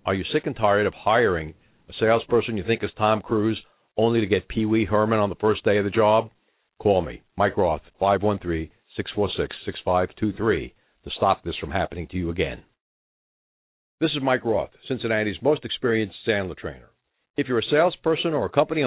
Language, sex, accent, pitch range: English, male, American, 105-130 Hz